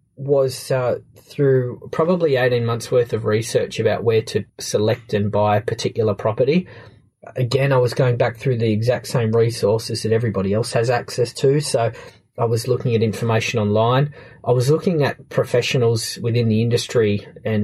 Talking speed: 170 wpm